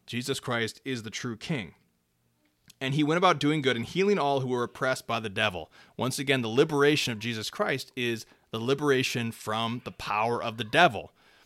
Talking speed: 195 wpm